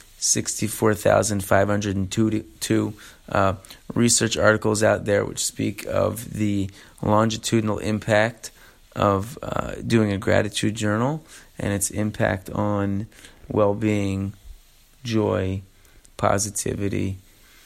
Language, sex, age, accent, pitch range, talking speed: English, male, 30-49, American, 95-110 Hz, 80 wpm